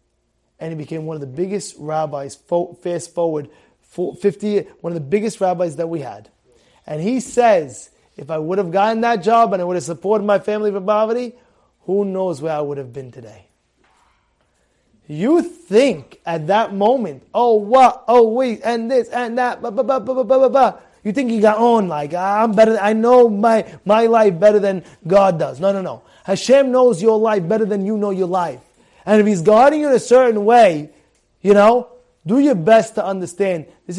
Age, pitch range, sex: 20-39, 165-230 Hz, male